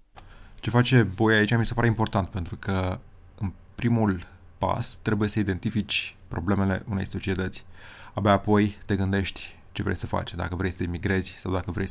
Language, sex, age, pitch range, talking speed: Romanian, male, 20-39, 95-105 Hz, 170 wpm